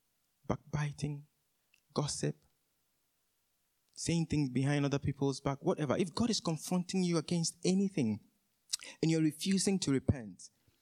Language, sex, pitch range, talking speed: English, male, 125-185 Hz, 115 wpm